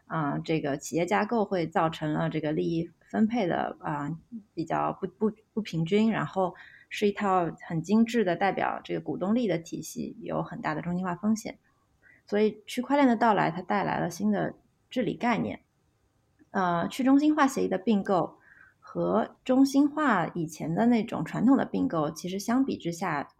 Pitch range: 165-225 Hz